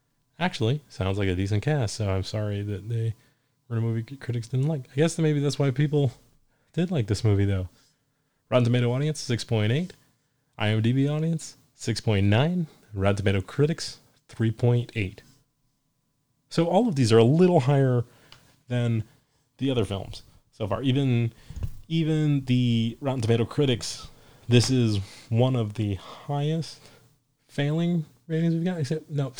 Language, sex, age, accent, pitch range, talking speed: English, male, 30-49, American, 115-145 Hz, 155 wpm